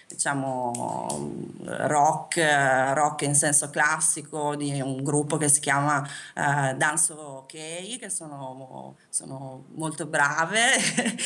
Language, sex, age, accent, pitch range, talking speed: Italian, female, 30-49, native, 150-185 Hz, 105 wpm